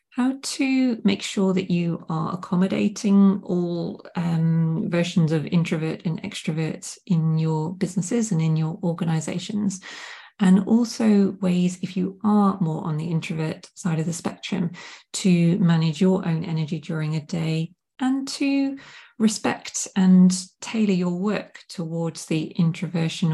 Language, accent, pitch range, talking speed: English, British, 170-200 Hz, 140 wpm